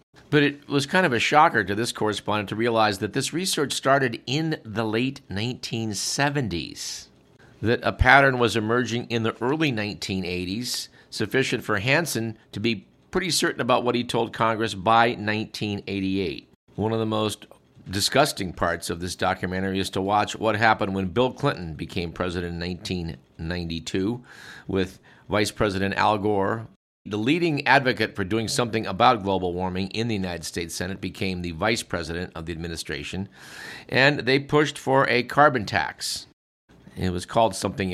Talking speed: 160 wpm